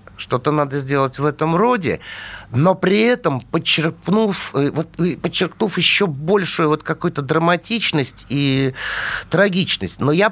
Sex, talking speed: male, 110 wpm